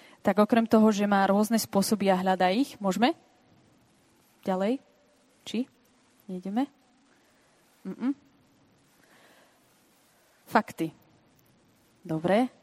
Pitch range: 185-225 Hz